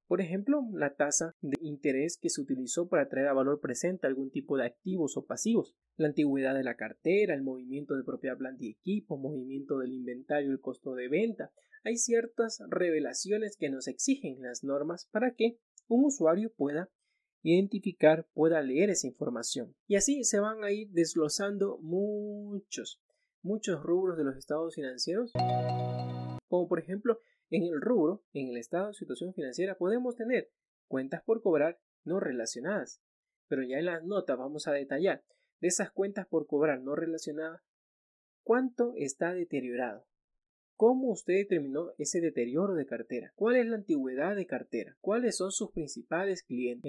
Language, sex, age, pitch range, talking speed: Spanish, male, 30-49, 140-210 Hz, 160 wpm